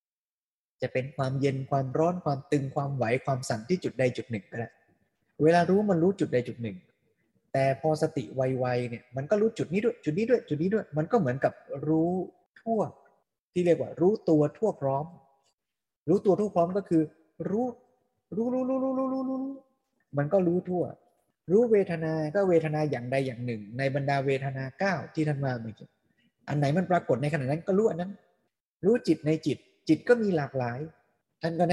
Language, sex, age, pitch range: Thai, male, 20-39, 135-185 Hz